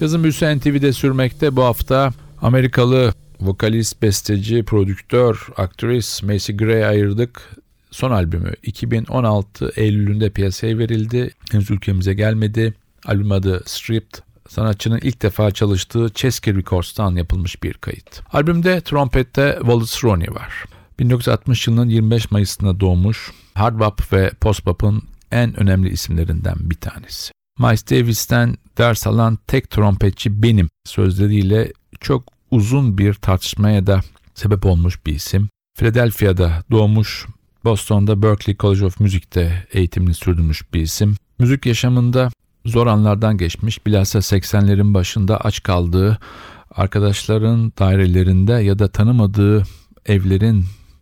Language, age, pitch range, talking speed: Turkish, 50-69, 95-115 Hz, 115 wpm